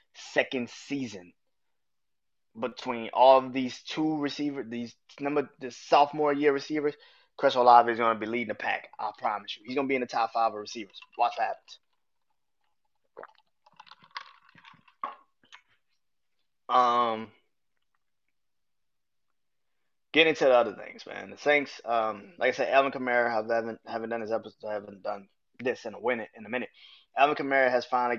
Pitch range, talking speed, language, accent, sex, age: 110-140 Hz, 160 wpm, English, American, male, 20-39